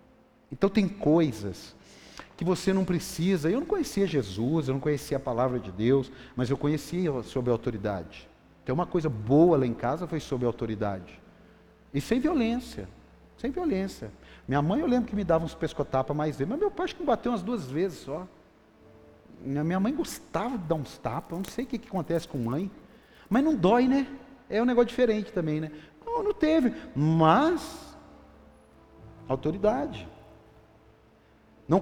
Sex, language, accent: male, Portuguese, Brazilian